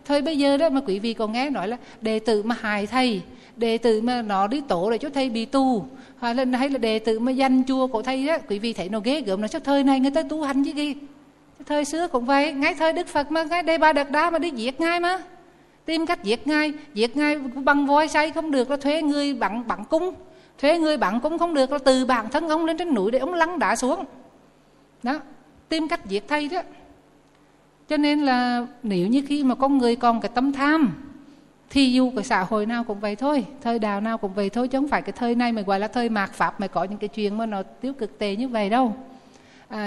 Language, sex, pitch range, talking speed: Vietnamese, female, 225-285 Hz, 255 wpm